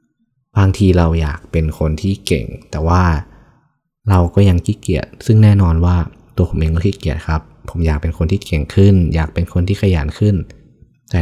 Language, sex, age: Thai, male, 20-39